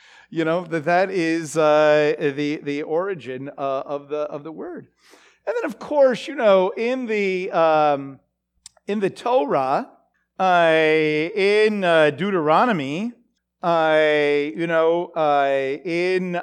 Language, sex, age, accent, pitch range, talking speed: English, male, 50-69, American, 150-205 Hz, 130 wpm